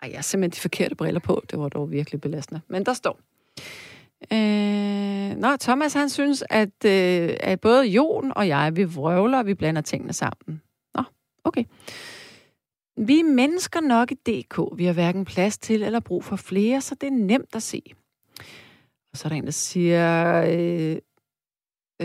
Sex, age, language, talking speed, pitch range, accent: female, 30-49, Danish, 180 wpm, 170-235 Hz, native